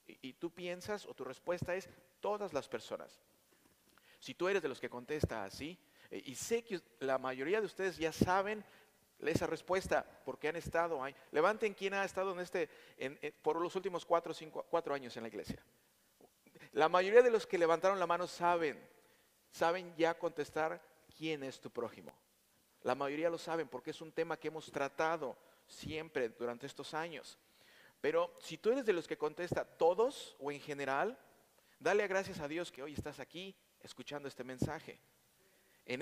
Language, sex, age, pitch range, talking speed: Spanish, male, 50-69, 140-180 Hz, 180 wpm